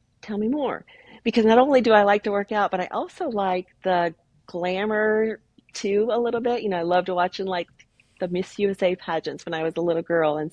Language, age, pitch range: English, 40-59, 160-190 Hz